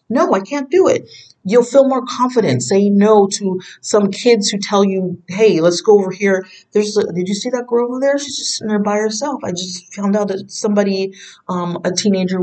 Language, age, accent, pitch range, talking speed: English, 40-59, American, 175-230 Hz, 220 wpm